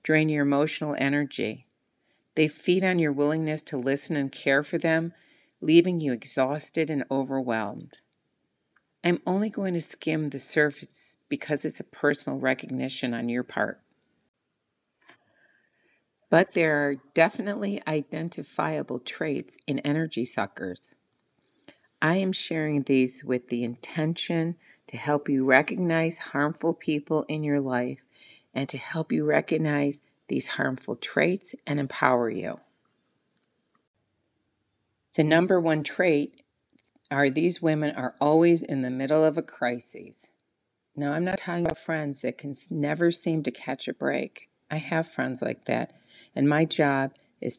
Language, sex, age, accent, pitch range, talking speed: English, female, 40-59, American, 135-160 Hz, 135 wpm